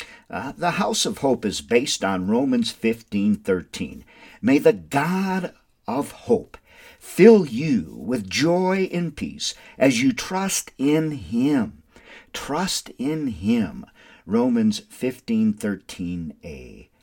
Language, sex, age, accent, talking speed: English, male, 50-69, American, 110 wpm